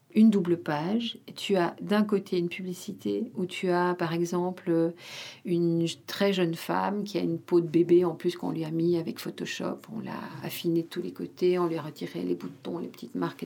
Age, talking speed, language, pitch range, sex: 50-69, 215 wpm, French, 175-215 Hz, female